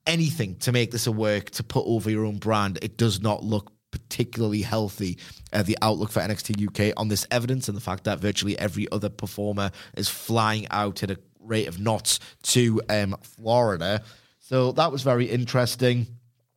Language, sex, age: English, male, 30-49